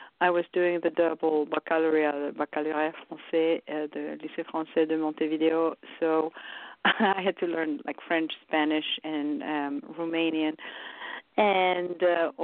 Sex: female